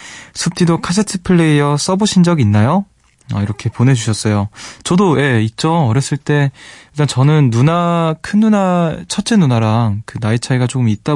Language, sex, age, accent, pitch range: Korean, male, 20-39, native, 110-150 Hz